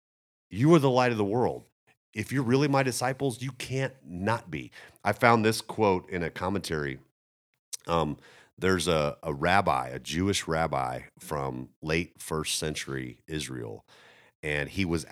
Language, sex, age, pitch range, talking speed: English, male, 40-59, 75-105 Hz, 155 wpm